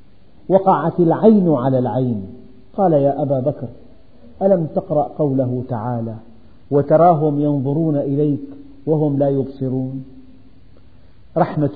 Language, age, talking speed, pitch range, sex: Arabic, 50-69, 95 wpm, 115-165 Hz, male